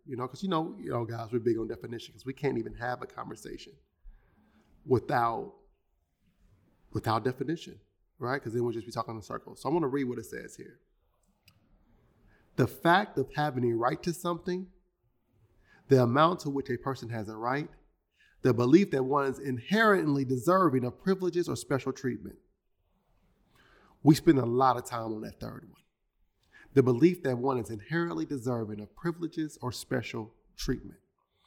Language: English